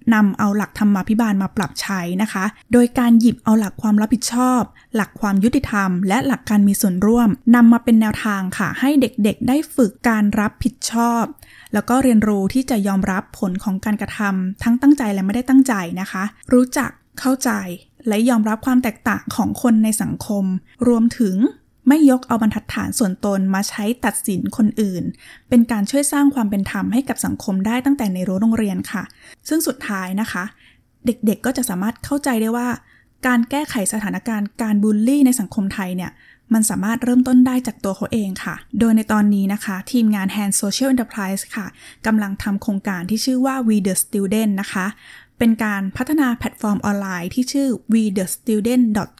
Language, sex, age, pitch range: Thai, female, 10-29, 200-245 Hz